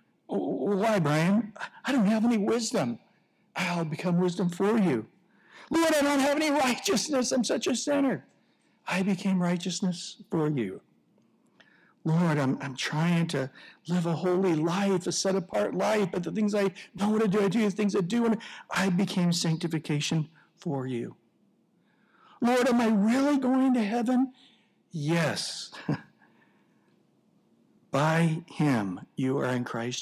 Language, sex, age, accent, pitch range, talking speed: English, male, 60-79, American, 155-220 Hz, 150 wpm